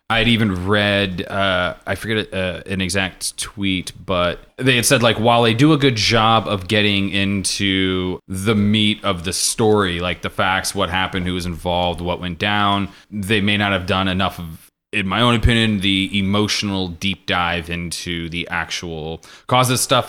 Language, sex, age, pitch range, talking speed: English, male, 20-39, 90-110 Hz, 180 wpm